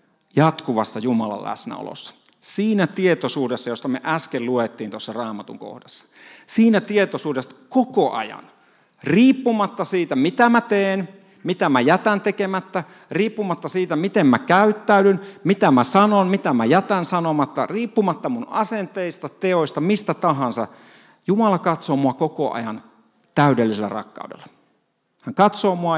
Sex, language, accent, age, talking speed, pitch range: male, Finnish, native, 50-69, 120 wpm, 140-200 Hz